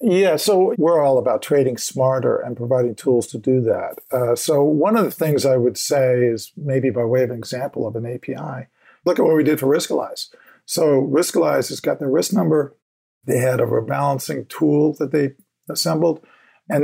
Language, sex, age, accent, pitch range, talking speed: English, male, 50-69, American, 130-160 Hz, 195 wpm